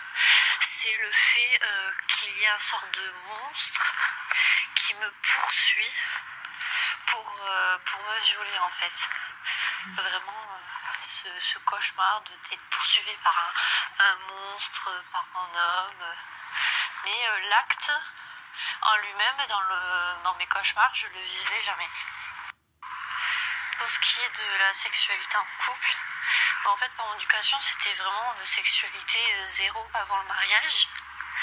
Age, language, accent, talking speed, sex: 30-49, French, French, 135 wpm, female